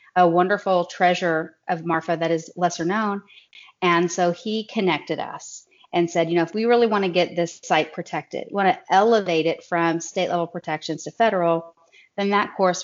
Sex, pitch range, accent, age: female, 170-205 Hz, American, 30-49